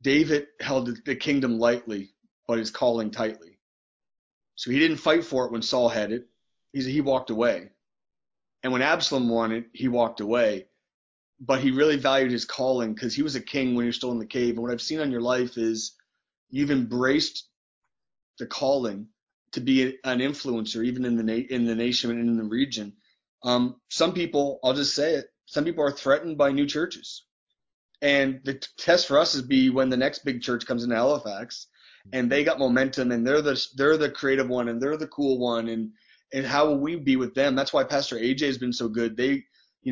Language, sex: English, male